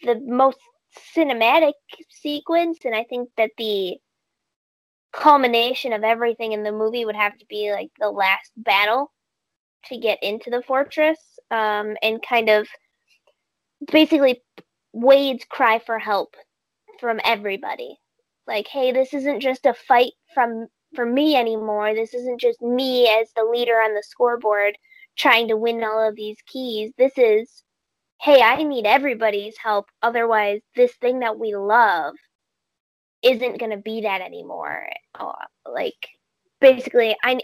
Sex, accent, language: female, American, English